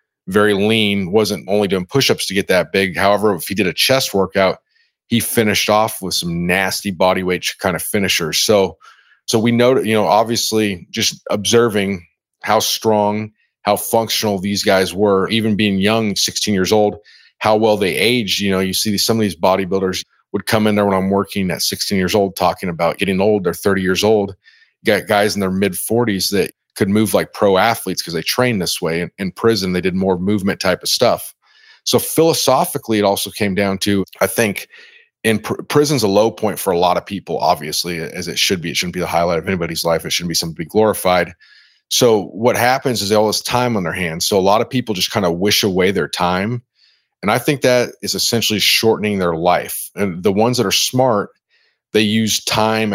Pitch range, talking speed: 95-115 Hz, 215 wpm